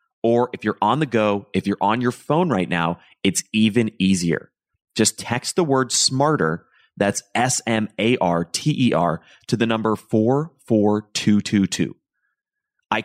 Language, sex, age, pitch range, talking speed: English, male, 30-49, 100-135 Hz, 130 wpm